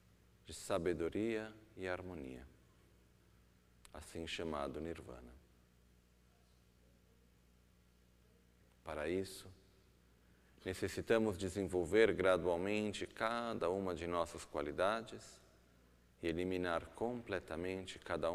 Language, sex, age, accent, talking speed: Italian, male, 40-59, Brazilian, 70 wpm